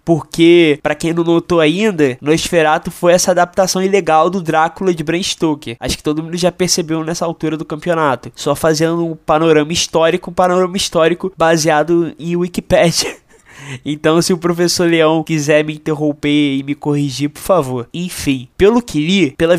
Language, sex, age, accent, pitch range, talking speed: Portuguese, male, 20-39, Brazilian, 150-180 Hz, 170 wpm